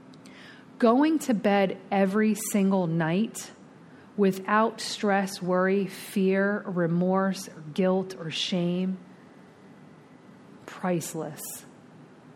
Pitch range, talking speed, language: 180-215 Hz, 75 wpm, English